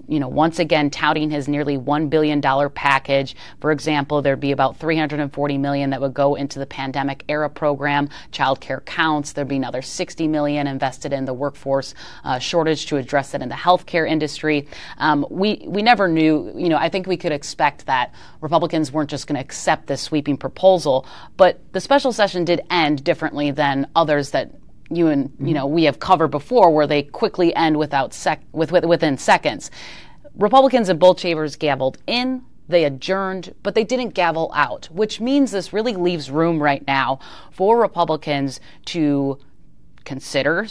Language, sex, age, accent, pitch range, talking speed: English, female, 30-49, American, 145-175 Hz, 180 wpm